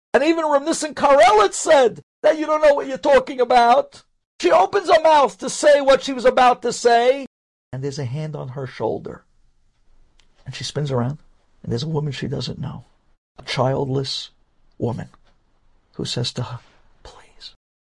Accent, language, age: American, English, 50-69